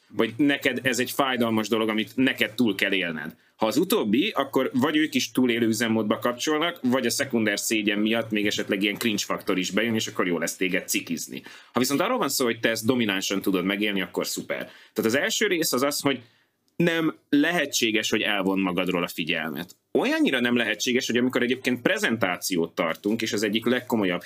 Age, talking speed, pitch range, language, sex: 30-49, 195 wpm, 100-125 Hz, Hungarian, male